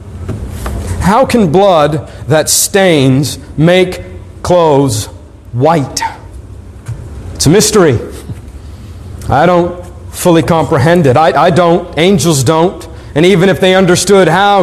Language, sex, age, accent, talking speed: English, male, 50-69, American, 110 wpm